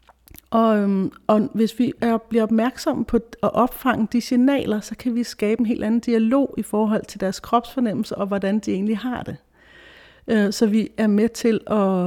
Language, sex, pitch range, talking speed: Danish, female, 190-230 Hz, 180 wpm